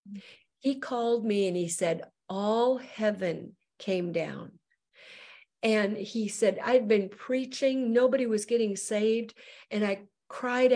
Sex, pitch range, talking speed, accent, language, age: female, 205-260 Hz, 130 wpm, American, English, 50-69